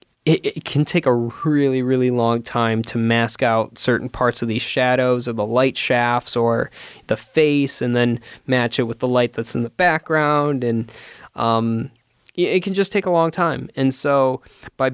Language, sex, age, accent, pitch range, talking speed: English, male, 10-29, American, 115-135 Hz, 185 wpm